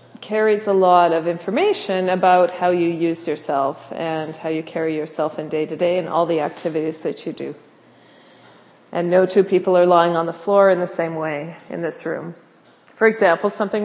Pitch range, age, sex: 175-225 Hz, 40-59, female